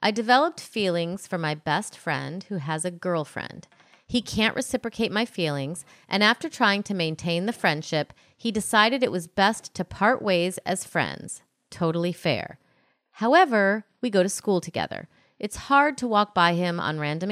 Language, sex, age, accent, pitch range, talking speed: English, female, 30-49, American, 165-220 Hz, 170 wpm